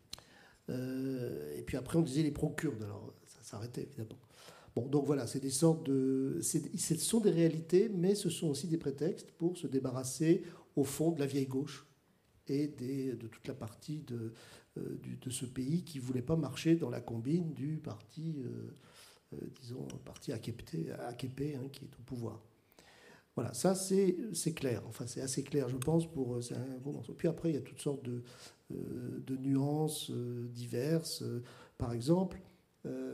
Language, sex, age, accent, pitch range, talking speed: French, male, 50-69, French, 125-160 Hz, 170 wpm